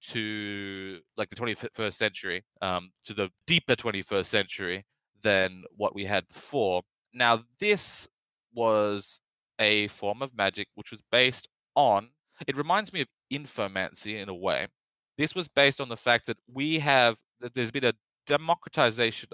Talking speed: 150 wpm